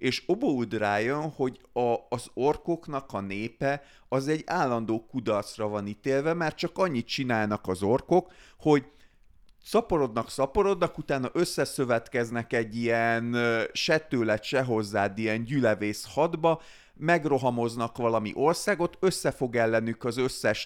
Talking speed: 120 wpm